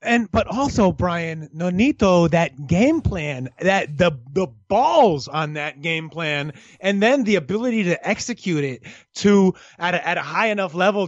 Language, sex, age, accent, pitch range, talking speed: English, male, 30-49, American, 165-225 Hz, 170 wpm